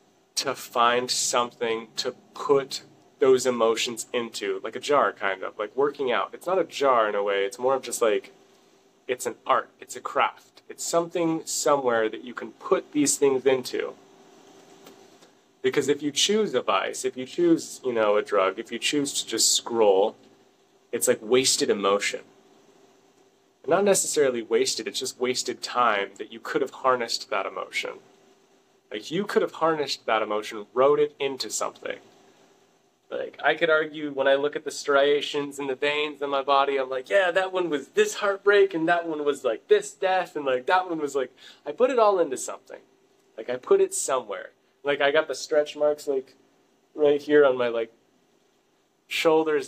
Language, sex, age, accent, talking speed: English, male, 30-49, American, 185 wpm